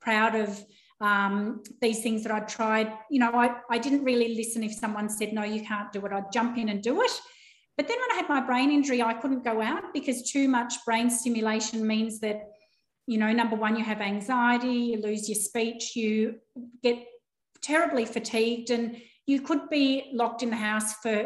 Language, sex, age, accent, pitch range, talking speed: English, female, 30-49, Australian, 215-260 Hz, 205 wpm